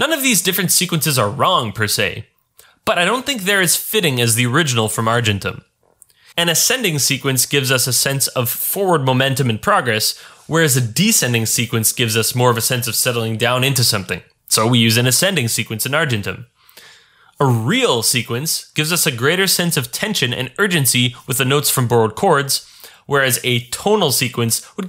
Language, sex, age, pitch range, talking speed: English, male, 20-39, 115-165 Hz, 190 wpm